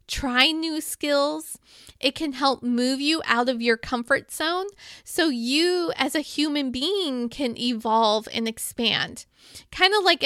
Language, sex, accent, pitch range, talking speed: English, female, American, 255-340 Hz, 150 wpm